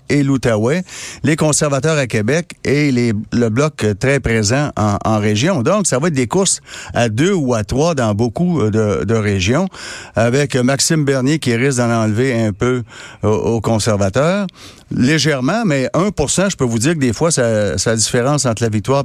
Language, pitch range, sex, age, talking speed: French, 115-155 Hz, male, 60-79, 185 wpm